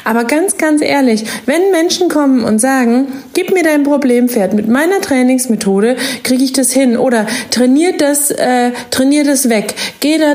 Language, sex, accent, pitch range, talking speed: German, female, German, 215-270 Hz, 160 wpm